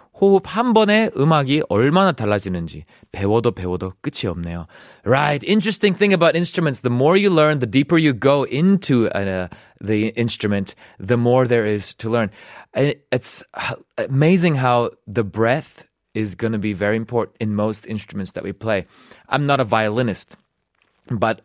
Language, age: Korean, 20-39